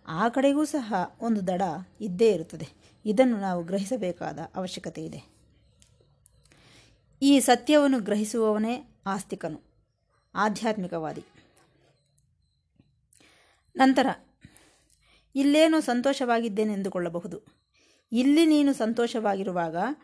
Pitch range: 190-255 Hz